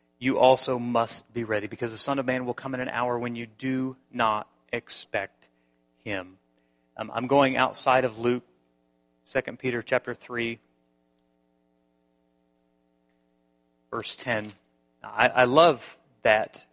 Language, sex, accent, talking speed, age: English, male, American, 135 wpm, 30-49